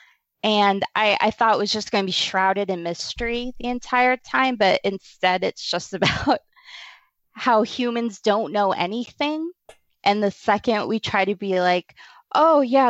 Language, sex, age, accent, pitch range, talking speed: English, female, 20-39, American, 185-245 Hz, 165 wpm